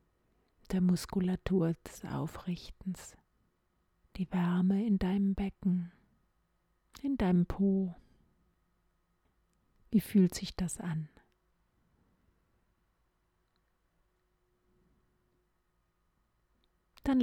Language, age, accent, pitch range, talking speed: German, 40-59, German, 175-200 Hz, 65 wpm